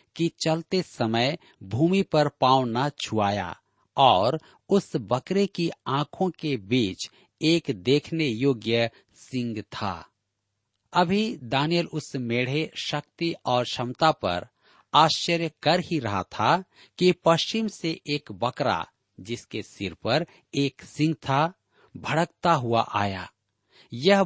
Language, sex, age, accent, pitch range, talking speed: Hindi, male, 50-69, native, 110-160 Hz, 120 wpm